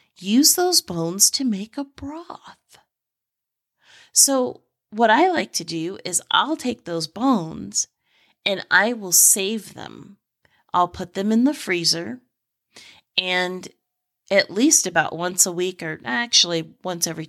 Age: 30-49